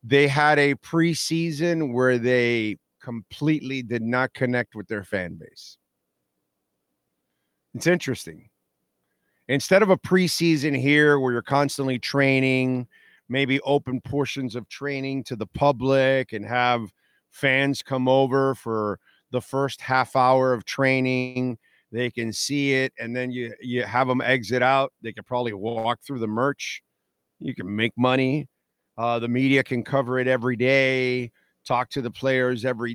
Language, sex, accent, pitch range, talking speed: English, male, American, 115-135 Hz, 150 wpm